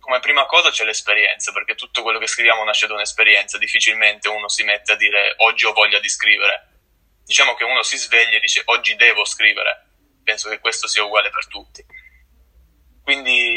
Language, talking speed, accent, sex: Italian, 185 wpm, native, male